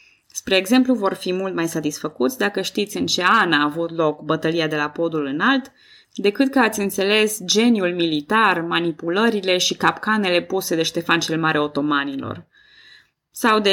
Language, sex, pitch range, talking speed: Romanian, female, 170-220 Hz, 160 wpm